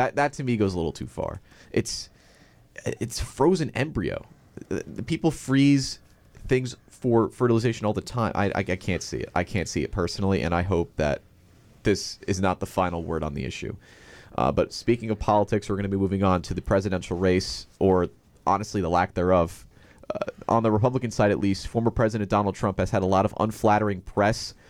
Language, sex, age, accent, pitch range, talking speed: English, male, 30-49, American, 95-120 Hz, 205 wpm